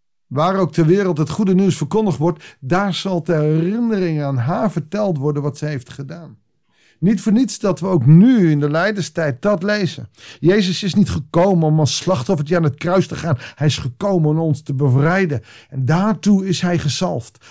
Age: 50-69